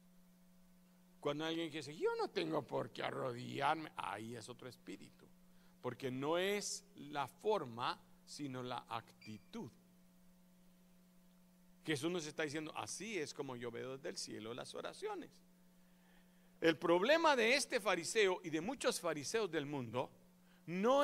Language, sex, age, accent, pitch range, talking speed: Spanish, male, 50-69, Mexican, 150-185 Hz, 135 wpm